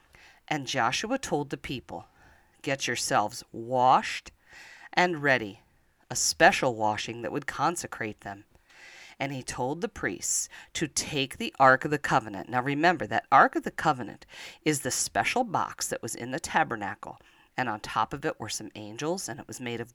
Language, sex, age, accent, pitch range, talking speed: English, female, 40-59, American, 120-155 Hz, 175 wpm